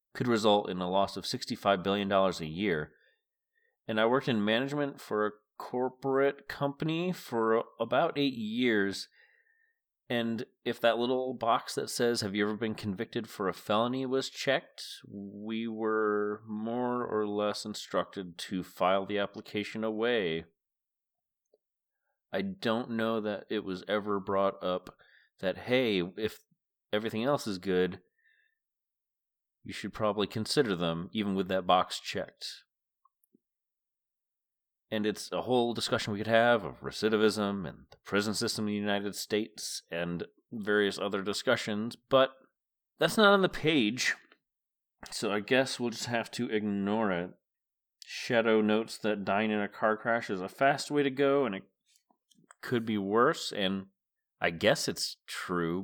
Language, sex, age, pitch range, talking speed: English, male, 30-49, 100-125 Hz, 150 wpm